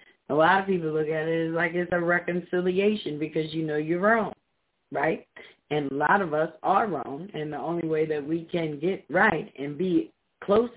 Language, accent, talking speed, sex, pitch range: English, American, 205 wpm, female, 155-185 Hz